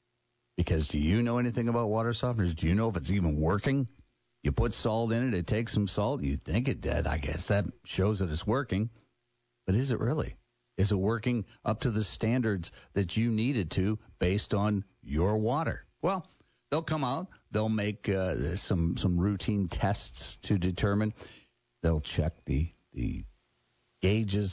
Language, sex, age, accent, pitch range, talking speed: English, male, 50-69, American, 85-115 Hz, 175 wpm